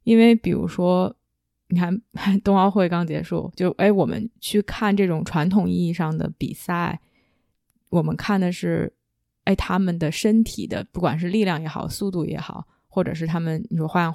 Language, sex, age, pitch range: Chinese, female, 20-39, 170-200 Hz